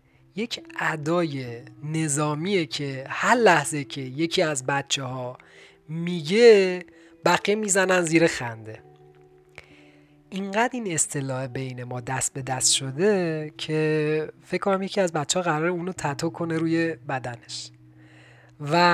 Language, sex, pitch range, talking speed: Persian, male, 130-170 Hz, 125 wpm